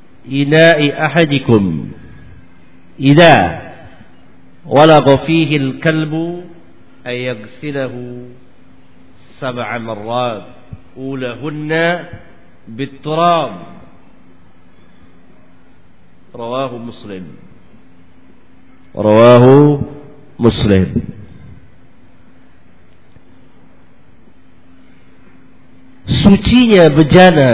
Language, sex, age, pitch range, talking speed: Swahili, male, 50-69, 105-150 Hz, 35 wpm